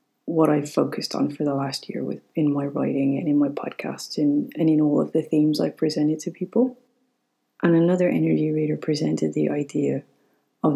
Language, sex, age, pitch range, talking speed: English, female, 30-49, 140-160 Hz, 195 wpm